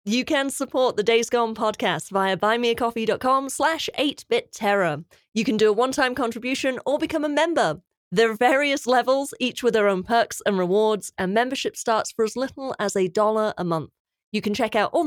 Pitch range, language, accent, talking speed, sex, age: 220-280 Hz, English, British, 185 wpm, female, 30-49